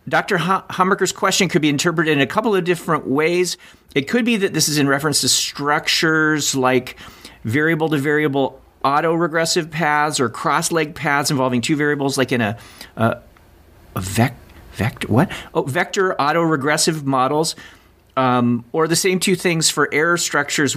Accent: American